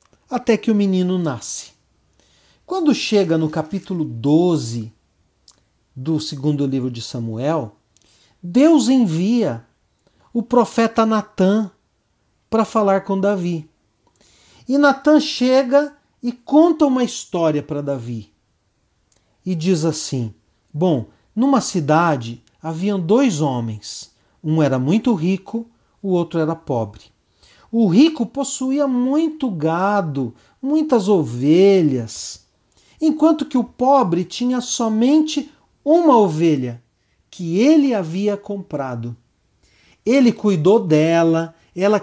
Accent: Brazilian